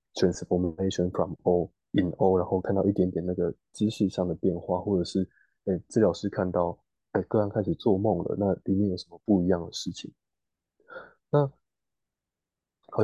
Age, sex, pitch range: 20-39, male, 90-105 Hz